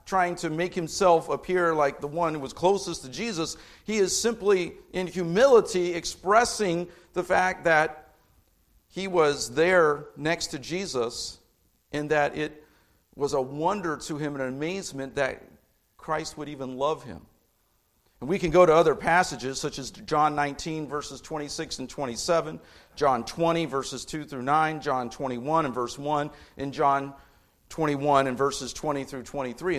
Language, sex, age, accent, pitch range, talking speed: English, male, 50-69, American, 130-170 Hz, 160 wpm